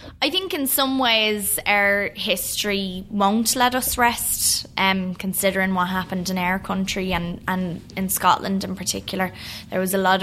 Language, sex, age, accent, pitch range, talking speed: English, female, 20-39, Irish, 180-205 Hz, 165 wpm